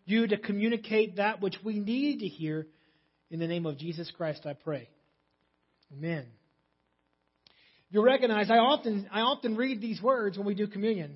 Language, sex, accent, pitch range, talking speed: English, male, American, 165-225 Hz, 165 wpm